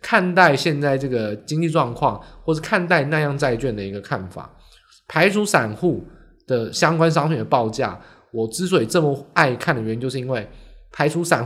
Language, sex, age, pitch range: Chinese, male, 20-39, 115-175 Hz